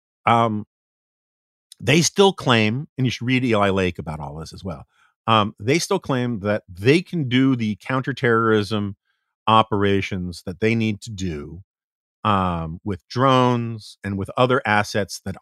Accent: American